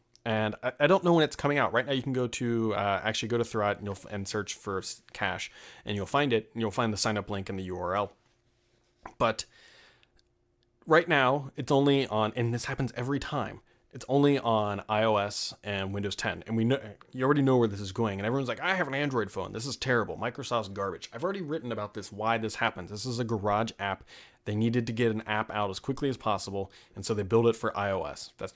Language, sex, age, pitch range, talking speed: English, male, 30-49, 105-130 Hz, 235 wpm